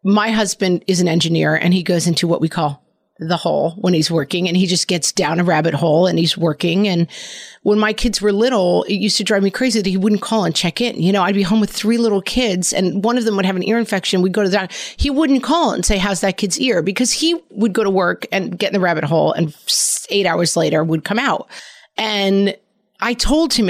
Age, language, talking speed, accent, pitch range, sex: 40-59, English, 260 wpm, American, 175-225 Hz, female